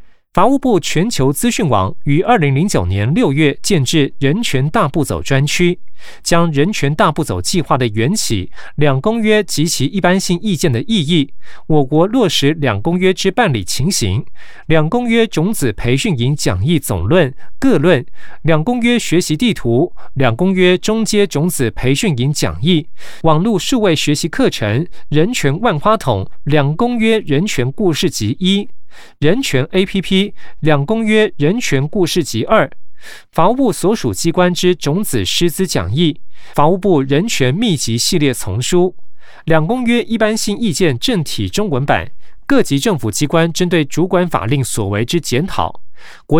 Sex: male